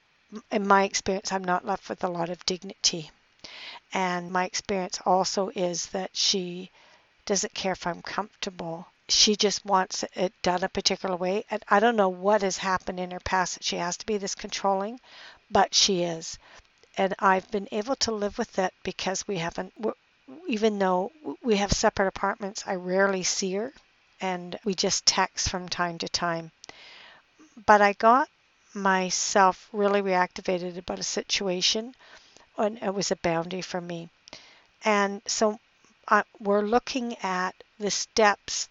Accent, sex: American, female